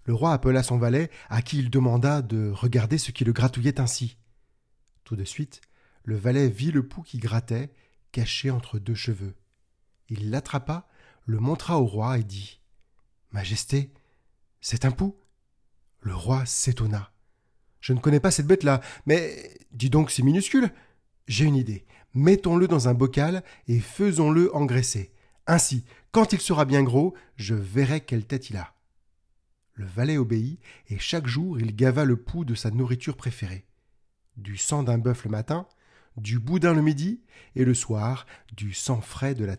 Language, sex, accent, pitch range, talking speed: French, male, French, 110-140 Hz, 165 wpm